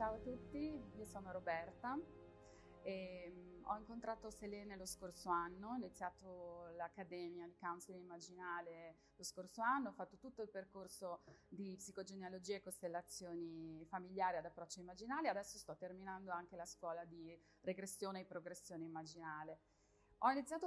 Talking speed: 140 wpm